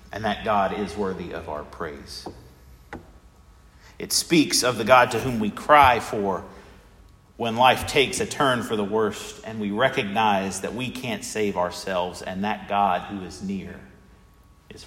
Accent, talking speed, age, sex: American, 165 wpm, 40-59, male